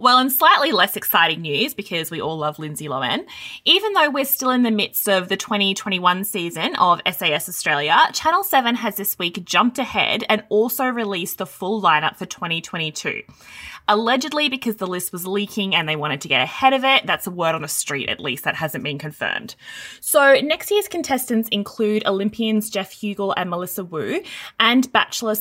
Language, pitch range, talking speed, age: English, 170-240 Hz, 190 wpm, 20-39